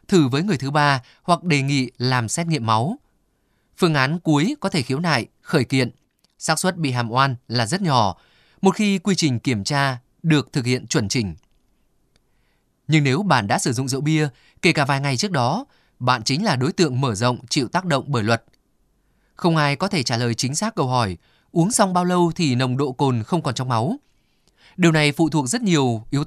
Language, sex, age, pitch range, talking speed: Vietnamese, male, 20-39, 125-165 Hz, 215 wpm